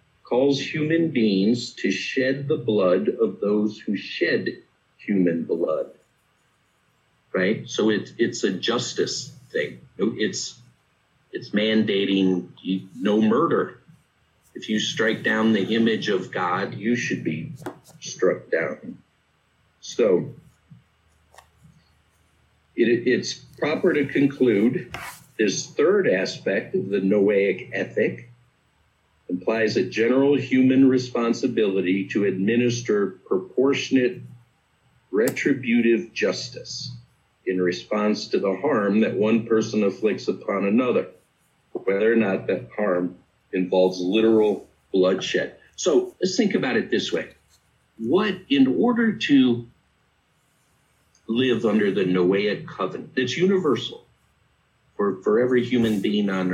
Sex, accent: male, American